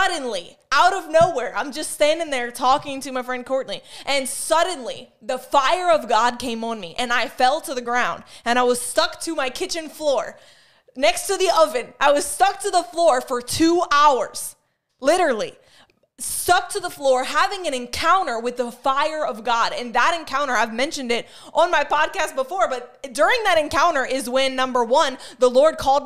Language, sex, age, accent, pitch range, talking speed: English, female, 20-39, American, 255-325 Hz, 190 wpm